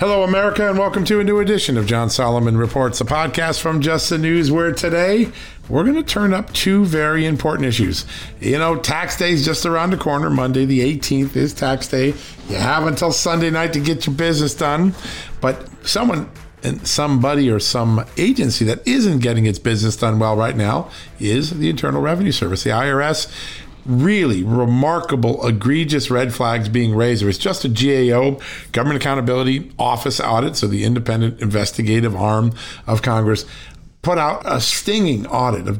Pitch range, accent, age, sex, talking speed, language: 115-160 Hz, American, 50-69, male, 180 wpm, English